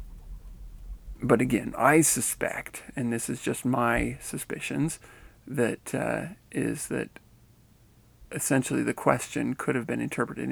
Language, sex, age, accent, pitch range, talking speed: English, male, 40-59, American, 115-145 Hz, 120 wpm